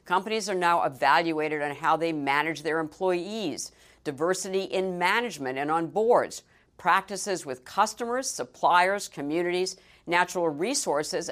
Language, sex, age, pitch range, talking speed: English, female, 50-69, 145-185 Hz, 120 wpm